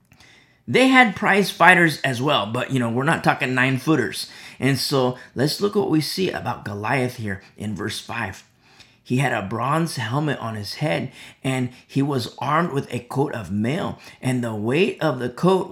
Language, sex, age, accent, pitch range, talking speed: English, male, 30-49, American, 120-165 Hz, 190 wpm